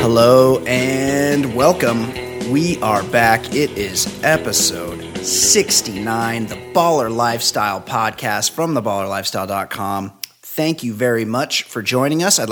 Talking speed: 115 wpm